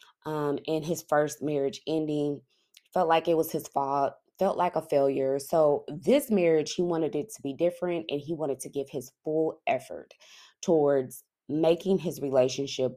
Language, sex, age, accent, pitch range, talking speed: English, female, 20-39, American, 145-200 Hz, 170 wpm